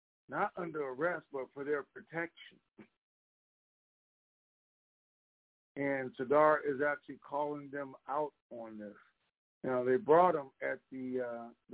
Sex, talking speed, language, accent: male, 120 wpm, English, American